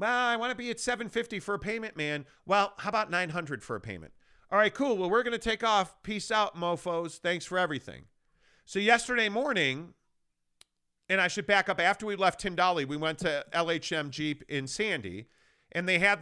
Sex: male